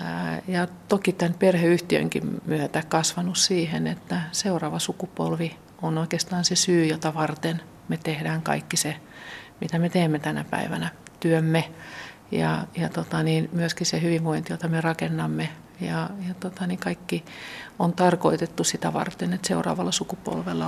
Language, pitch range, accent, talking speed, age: Finnish, 165-180 Hz, native, 130 wpm, 50-69